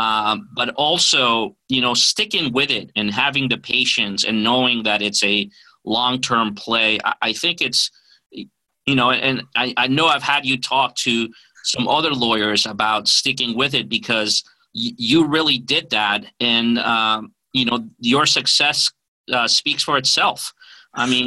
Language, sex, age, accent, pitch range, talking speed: English, male, 40-59, American, 115-145 Hz, 165 wpm